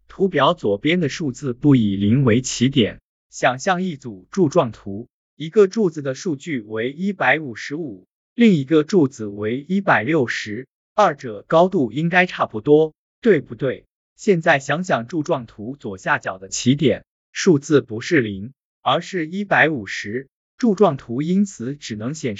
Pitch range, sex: 120-175 Hz, male